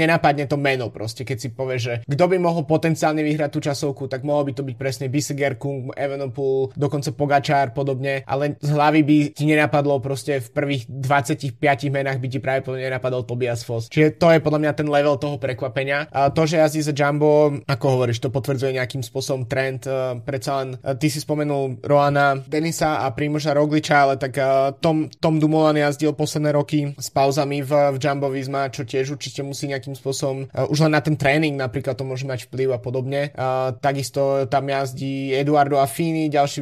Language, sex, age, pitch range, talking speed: Slovak, male, 20-39, 130-145 Hz, 190 wpm